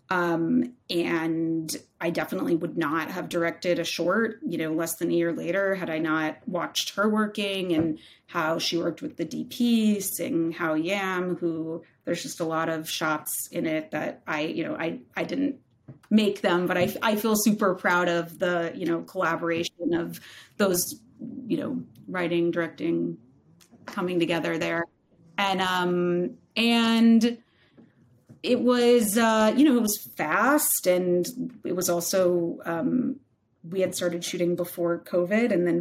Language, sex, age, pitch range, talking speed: English, female, 30-49, 170-205 Hz, 160 wpm